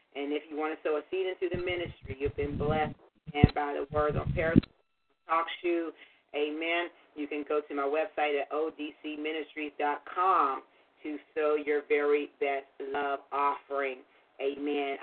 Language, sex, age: English, female, 40-59